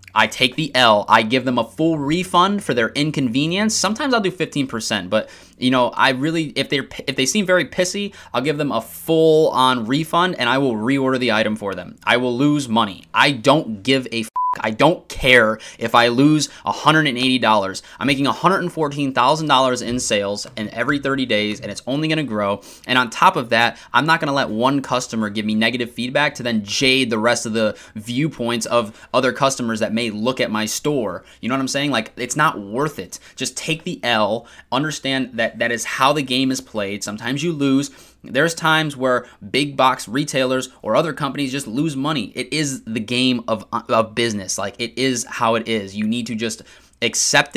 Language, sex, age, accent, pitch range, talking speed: English, male, 20-39, American, 115-145 Hz, 205 wpm